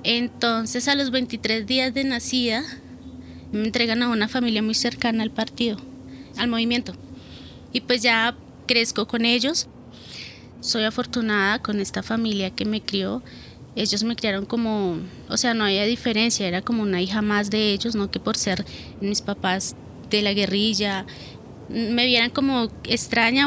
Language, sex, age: Spanish, female, 20-39